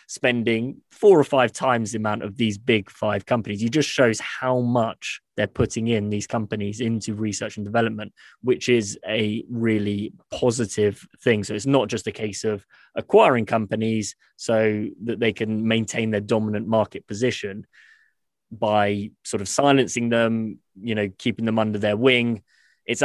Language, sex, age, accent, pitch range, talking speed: English, male, 20-39, British, 105-120 Hz, 165 wpm